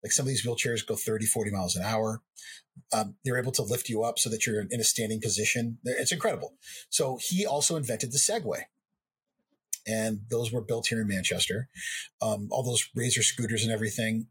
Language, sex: English, male